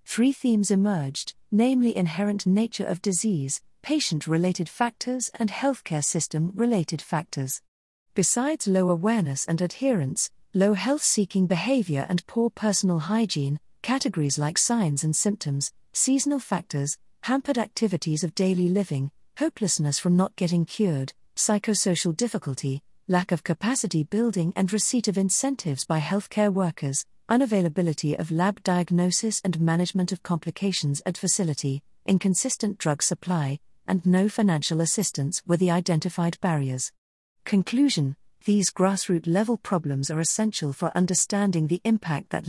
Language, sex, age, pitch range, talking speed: English, female, 40-59, 155-210 Hz, 125 wpm